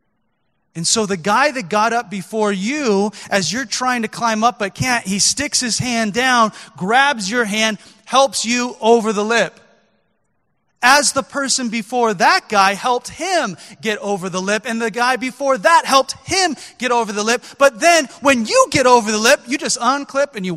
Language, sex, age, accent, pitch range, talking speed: English, male, 30-49, American, 200-260 Hz, 195 wpm